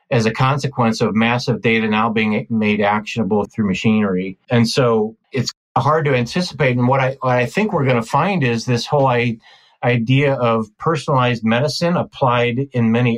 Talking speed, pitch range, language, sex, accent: 170 wpm, 120-145 Hz, English, male, American